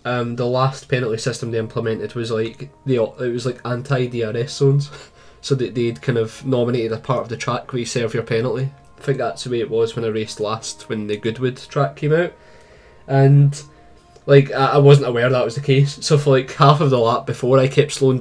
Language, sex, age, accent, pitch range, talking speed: English, male, 20-39, British, 115-140 Hz, 225 wpm